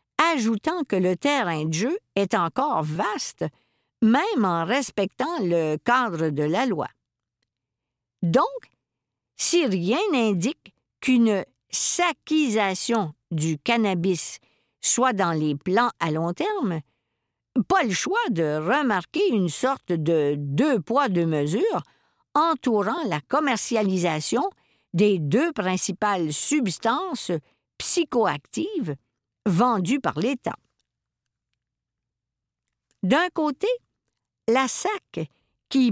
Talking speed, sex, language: 100 wpm, female, French